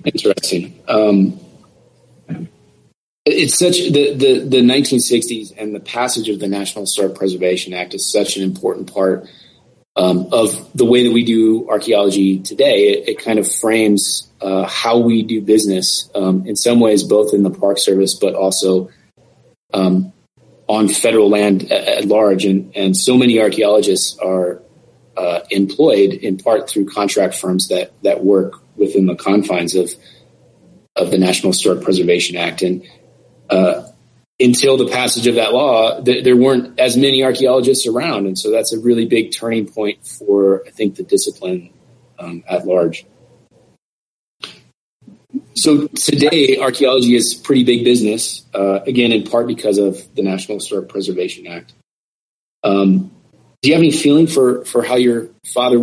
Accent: American